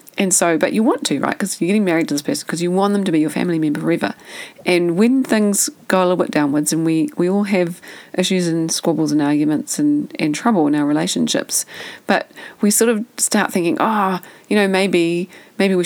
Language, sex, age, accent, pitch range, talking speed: English, female, 30-49, Australian, 165-230 Hz, 225 wpm